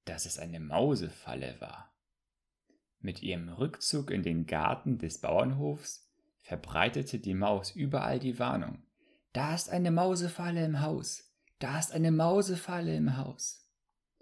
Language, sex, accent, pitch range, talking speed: German, male, German, 95-150 Hz, 130 wpm